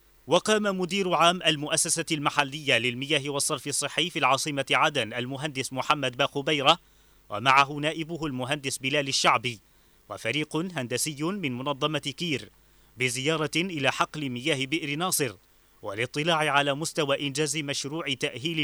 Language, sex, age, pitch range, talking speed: Arabic, male, 30-49, 135-165 Hz, 115 wpm